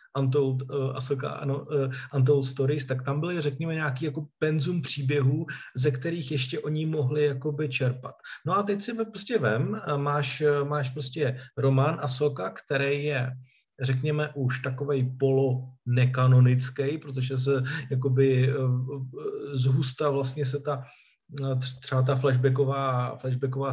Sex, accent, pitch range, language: male, native, 130-150 Hz, Czech